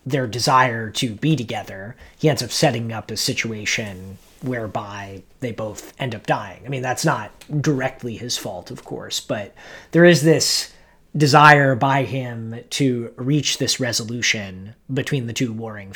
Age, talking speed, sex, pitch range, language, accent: 30-49, 160 wpm, male, 115-150 Hz, English, American